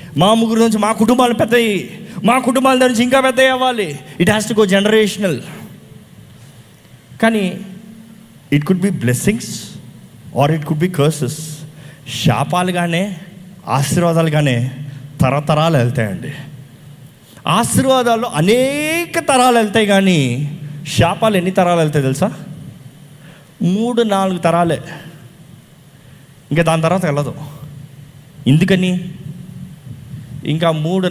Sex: male